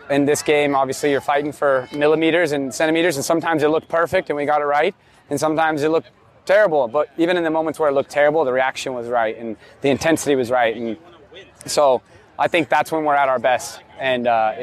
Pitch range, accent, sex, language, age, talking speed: 125-150 Hz, American, male, English, 30-49, 225 wpm